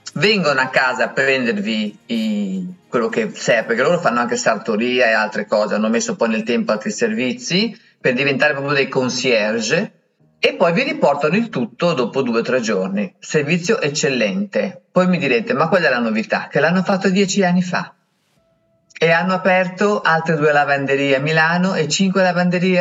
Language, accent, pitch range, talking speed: Italian, native, 140-210 Hz, 175 wpm